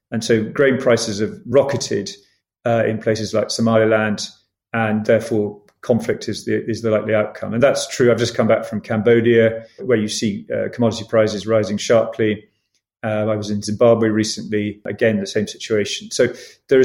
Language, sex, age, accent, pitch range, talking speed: English, male, 30-49, British, 110-125 Hz, 175 wpm